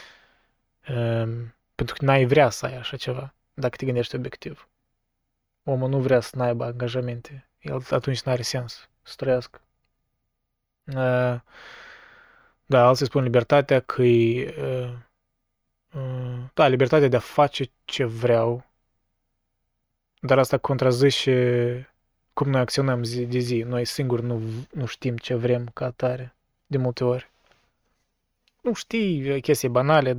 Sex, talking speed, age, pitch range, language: male, 125 wpm, 20-39, 120-140 Hz, Romanian